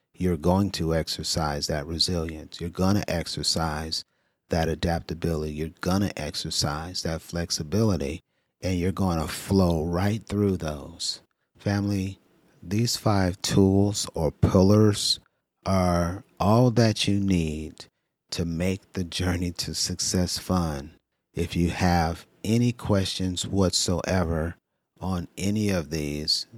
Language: English